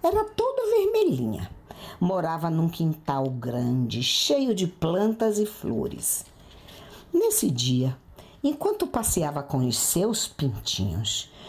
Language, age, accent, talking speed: Portuguese, 50-69, Brazilian, 105 wpm